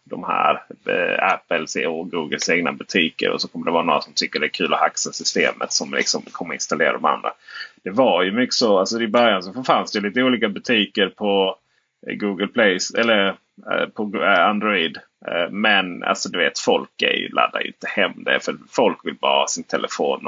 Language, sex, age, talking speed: Swedish, male, 30-49, 195 wpm